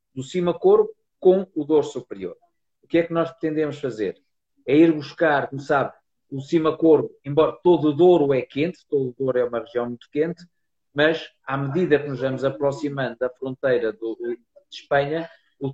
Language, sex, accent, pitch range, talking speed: Portuguese, male, Portuguese, 135-165 Hz, 180 wpm